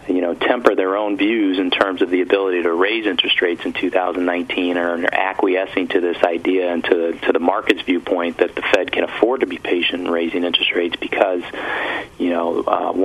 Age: 40-59